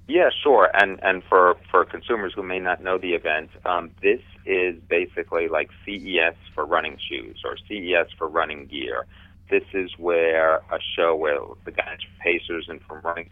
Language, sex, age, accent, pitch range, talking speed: English, male, 40-59, American, 85-95 Hz, 180 wpm